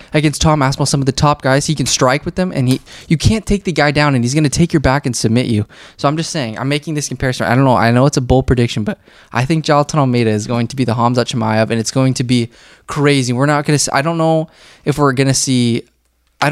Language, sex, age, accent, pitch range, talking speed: English, male, 20-39, American, 115-140 Hz, 285 wpm